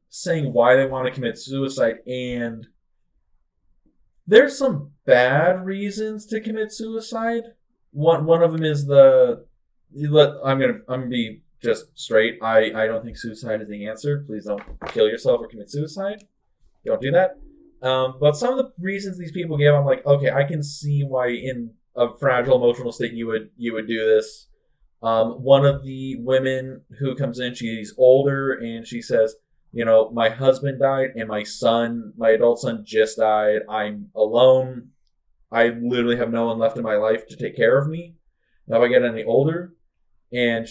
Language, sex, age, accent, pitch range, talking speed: English, male, 20-39, American, 115-170 Hz, 175 wpm